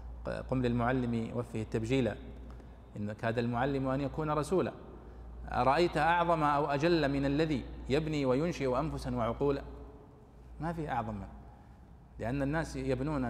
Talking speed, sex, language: 120 wpm, male, Arabic